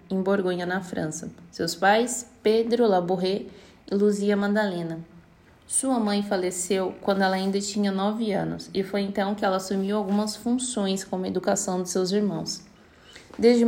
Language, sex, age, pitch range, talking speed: Portuguese, female, 20-39, 190-225 Hz, 155 wpm